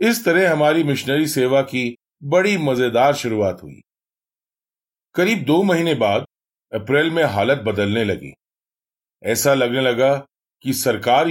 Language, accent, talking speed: Hindi, native, 125 wpm